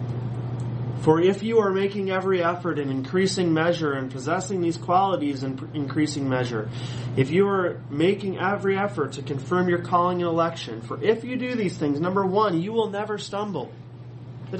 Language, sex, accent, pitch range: English, male, American, 120-160 Hz